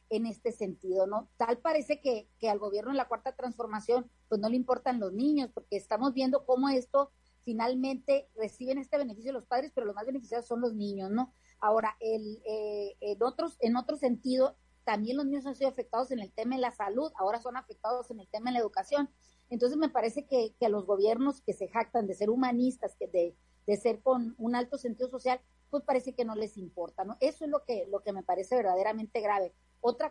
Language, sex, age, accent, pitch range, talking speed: Spanish, female, 30-49, Mexican, 215-265 Hz, 215 wpm